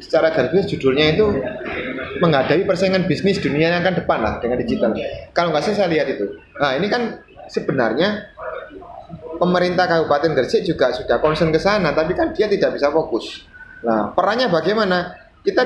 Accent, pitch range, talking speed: Indonesian, 140-185 Hz, 160 wpm